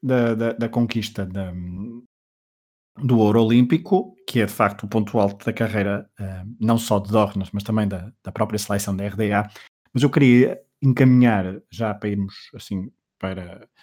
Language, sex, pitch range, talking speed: Portuguese, male, 105-130 Hz, 160 wpm